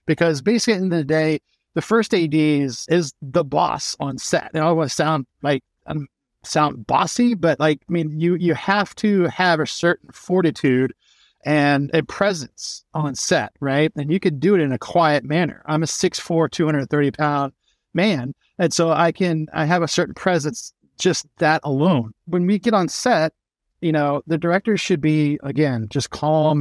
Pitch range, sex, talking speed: 145-180 Hz, male, 200 wpm